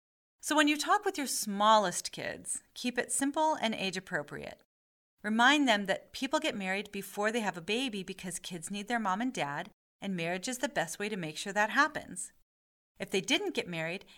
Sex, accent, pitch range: female, American, 185-255 Hz